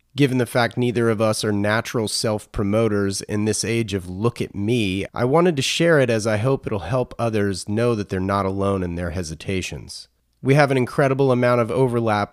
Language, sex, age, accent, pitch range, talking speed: English, male, 30-49, American, 100-130 Hz, 205 wpm